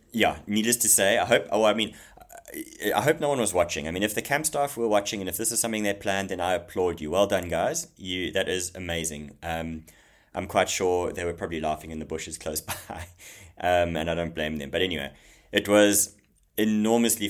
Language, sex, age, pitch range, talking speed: English, male, 20-39, 85-105 Hz, 225 wpm